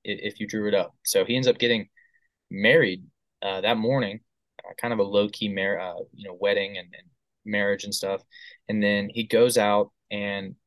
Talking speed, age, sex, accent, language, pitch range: 200 wpm, 20-39, male, American, English, 100-135 Hz